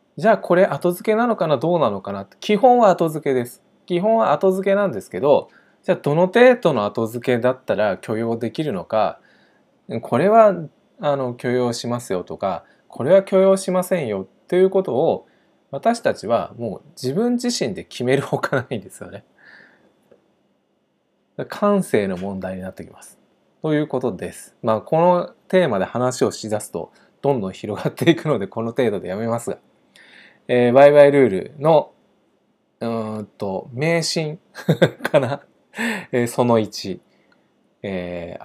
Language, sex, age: Japanese, male, 20-39